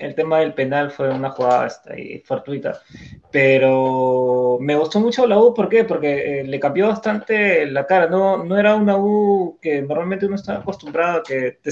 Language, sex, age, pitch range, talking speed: Spanish, male, 20-39, 135-190 Hz, 190 wpm